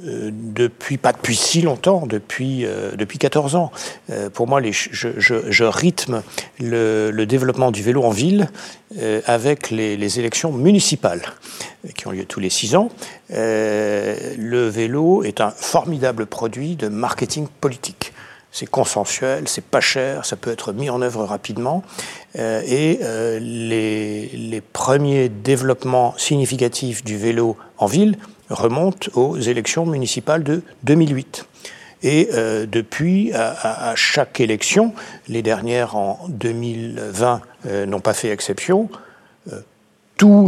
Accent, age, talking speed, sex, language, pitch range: French, 60-79, 145 wpm, male, French, 115-165 Hz